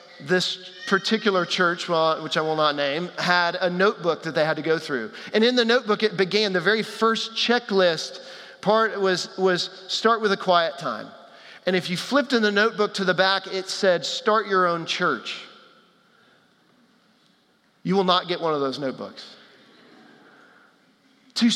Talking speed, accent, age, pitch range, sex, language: 170 wpm, American, 40-59, 175-230 Hz, male, English